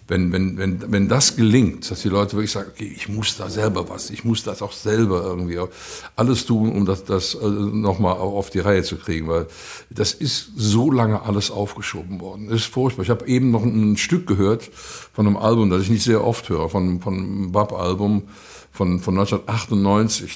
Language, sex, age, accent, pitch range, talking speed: German, male, 60-79, German, 90-110 Hz, 205 wpm